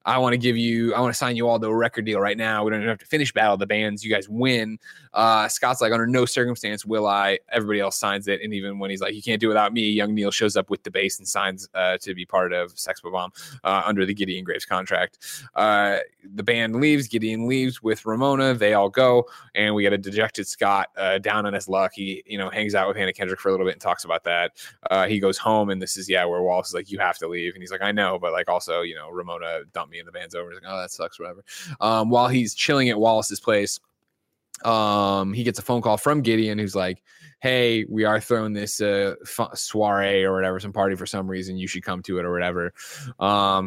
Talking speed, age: 260 wpm, 20-39